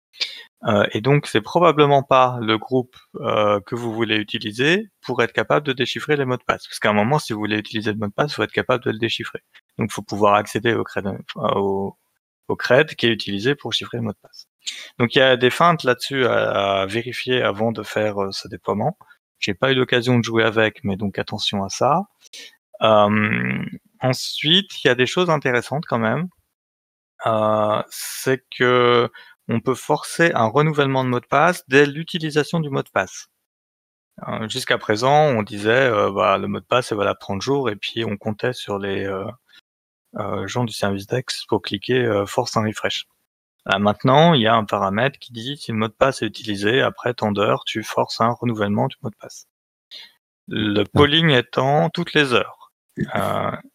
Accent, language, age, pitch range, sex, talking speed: French, French, 20-39, 105-135 Hz, male, 205 wpm